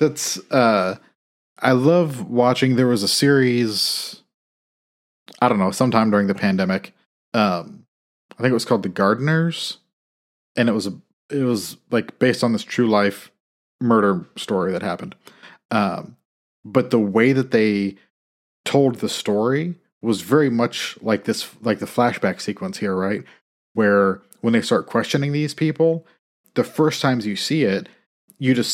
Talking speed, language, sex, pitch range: 155 wpm, English, male, 100-125 Hz